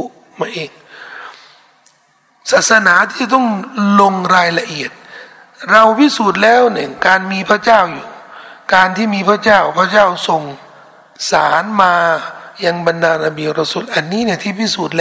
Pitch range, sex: 170-215 Hz, male